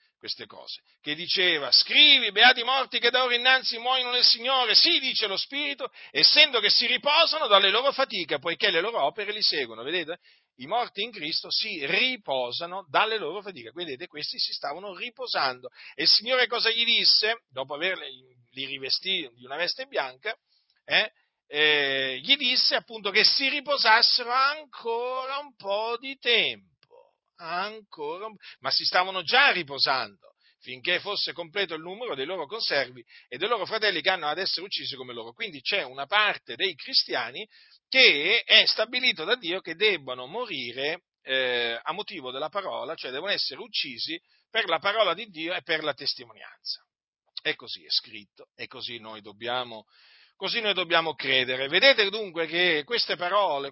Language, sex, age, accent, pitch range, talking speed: Italian, male, 50-69, native, 155-255 Hz, 165 wpm